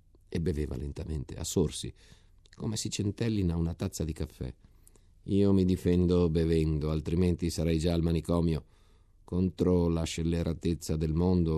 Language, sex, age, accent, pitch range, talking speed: Italian, male, 50-69, native, 80-95 Hz, 135 wpm